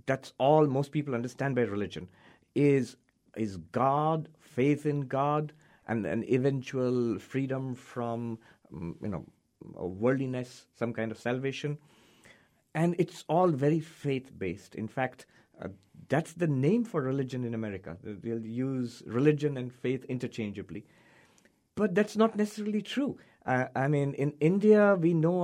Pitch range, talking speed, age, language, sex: 120-165 Hz, 140 wpm, 50-69, English, male